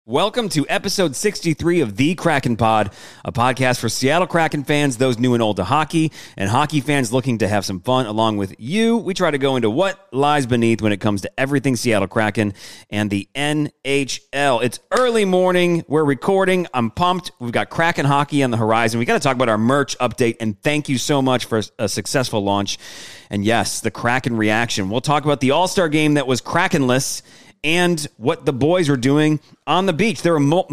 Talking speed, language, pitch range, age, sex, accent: 205 wpm, English, 115-180 Hz, 30-49, male, American